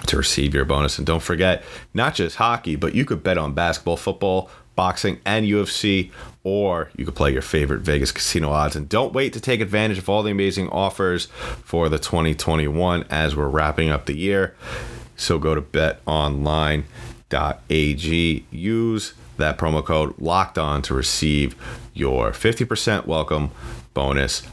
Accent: American